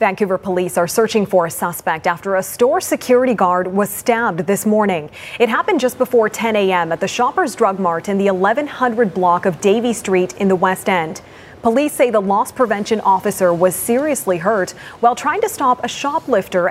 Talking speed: 190 wpm